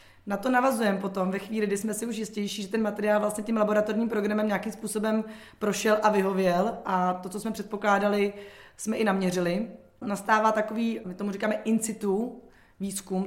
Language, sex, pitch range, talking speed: Czech, female, 200-225 Hz, 175 wpm